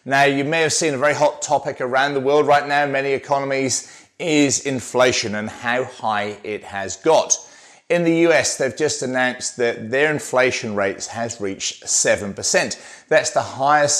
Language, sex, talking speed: English, male, 175 wpm